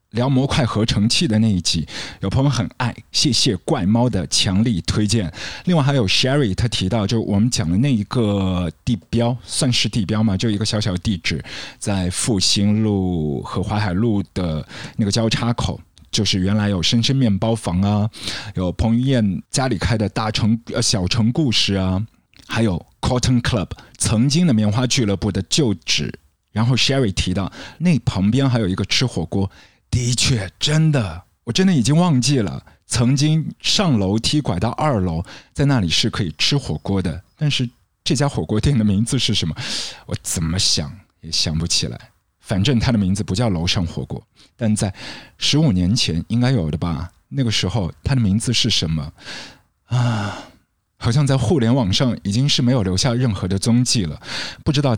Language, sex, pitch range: Chinese, male, 95-125 Hz